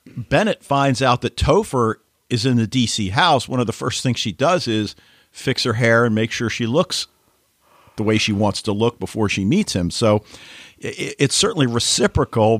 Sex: male